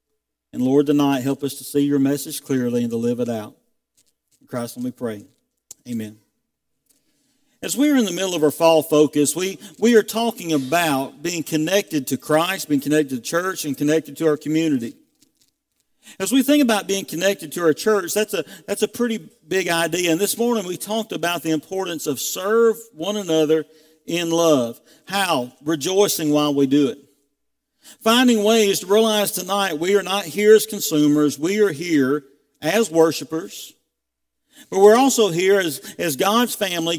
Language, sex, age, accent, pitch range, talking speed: English, male, 50-69, American, 150-210 Hz, 180 wpm